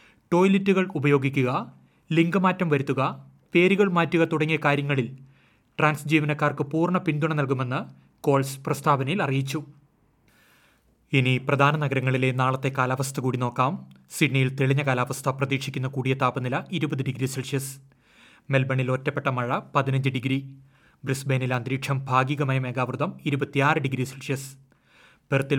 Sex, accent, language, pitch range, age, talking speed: male, native, Malayalam, 130-145 Hz, 30-49, 105 wpm